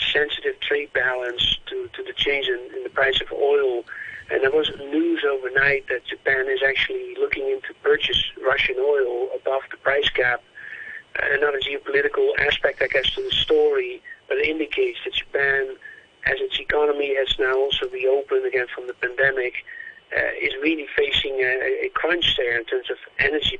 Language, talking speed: English, 170 wpm